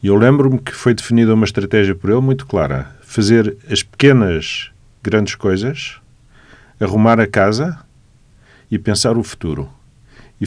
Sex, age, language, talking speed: male, 40-59, Portuguese, 145 wpm